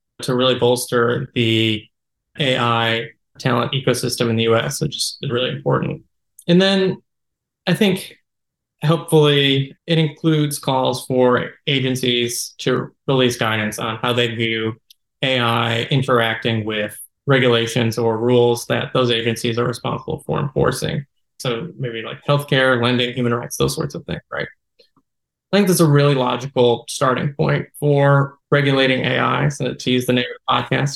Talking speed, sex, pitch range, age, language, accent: 145 wpm, male, 120-145 Hz, 20-39, English, American